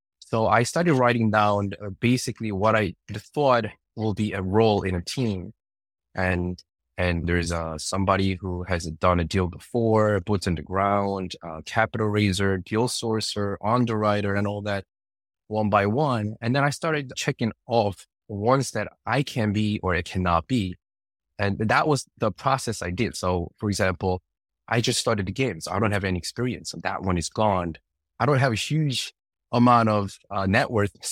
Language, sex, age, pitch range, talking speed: English, male, 20-39, 90-115 Hz, 180 wpm